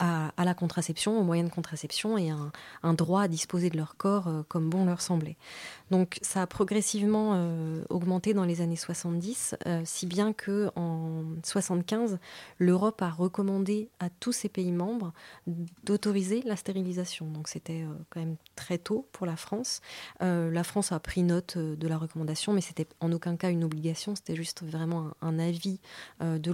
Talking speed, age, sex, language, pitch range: 185 wpm, 20-39, female, French, 160-190 Hz